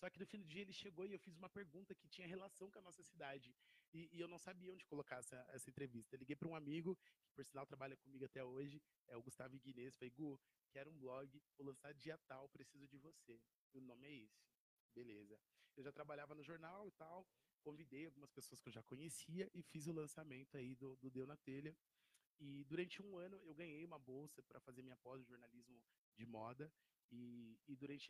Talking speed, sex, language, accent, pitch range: 230 wpm, male, Portuguese, Brazilian, 130-165 Hz